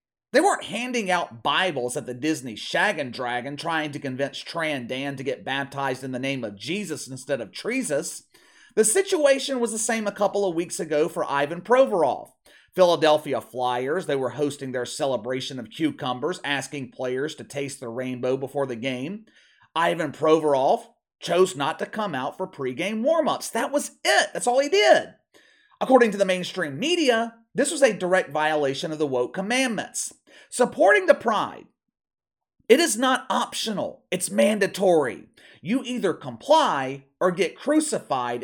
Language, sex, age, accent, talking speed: English, male, 30-49, American, 160 wpm